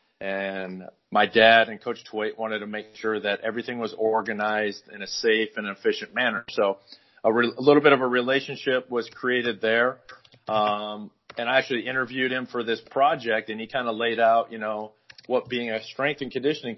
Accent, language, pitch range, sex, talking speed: American, English, 110-125 Hz, male, 195 wpm